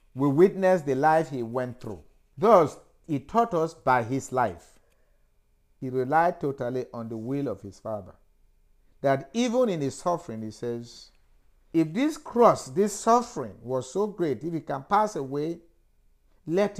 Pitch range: 115-185 Hz